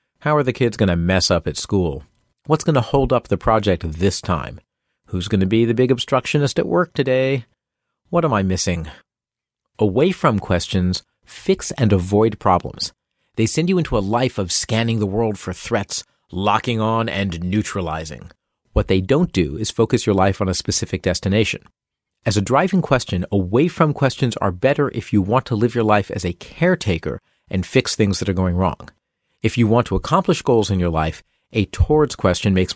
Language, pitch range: English, 95-130 Hz